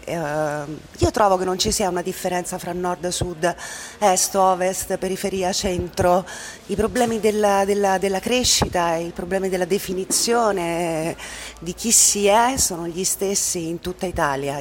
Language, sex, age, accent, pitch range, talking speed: Italian, female, 40-59, native, 165-210 Hz, 150 wpm